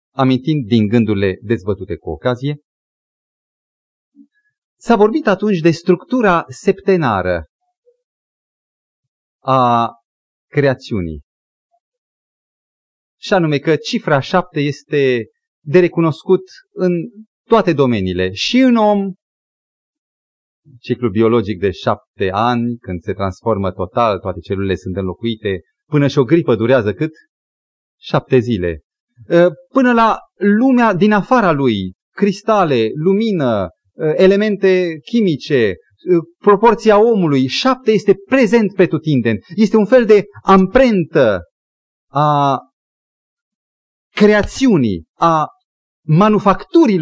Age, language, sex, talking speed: 30-49, Romanian, male, 95 wpm